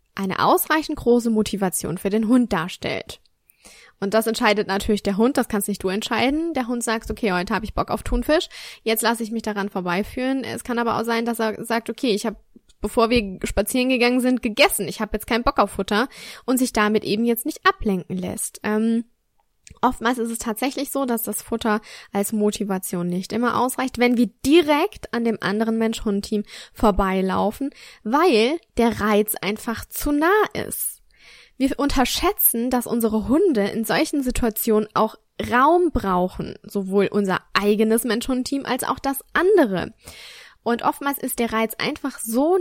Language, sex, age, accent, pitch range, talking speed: German, female, 10-29, German, 205-250 Hz, 175 wpm